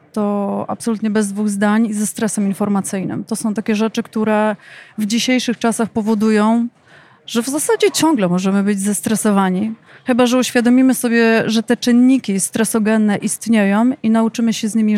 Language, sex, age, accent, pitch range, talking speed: Polish, female, 30-49, native, 205-235 Hz, 155 wpm